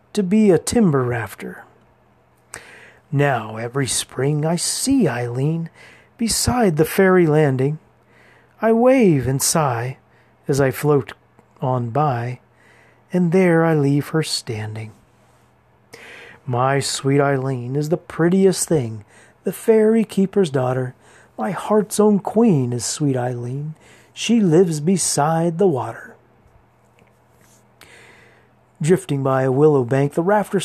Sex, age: male, 40-59